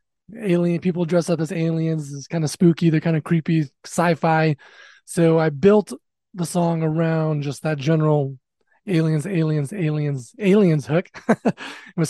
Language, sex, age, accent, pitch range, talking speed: English, male, 20-39, American, 155-180 Hz, 150 wpm